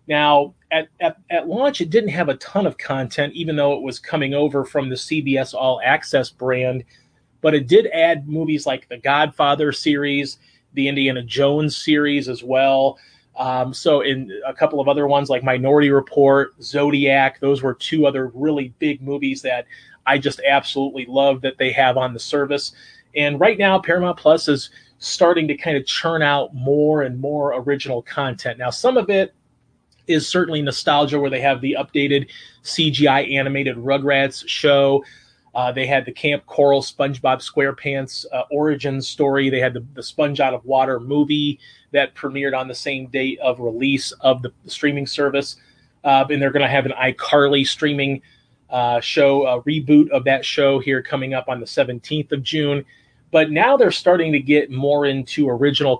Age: 30-49